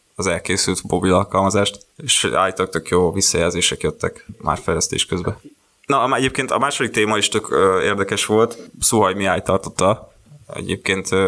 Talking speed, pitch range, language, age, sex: 130 wpm, 95-105 Hz, Hungarian, 20-39, male